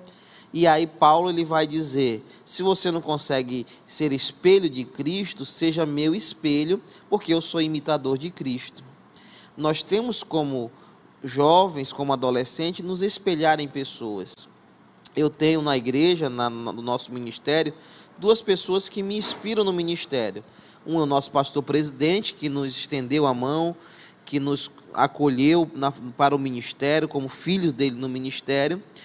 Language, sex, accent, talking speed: Portuguese, male, Brazilian, 145 wpm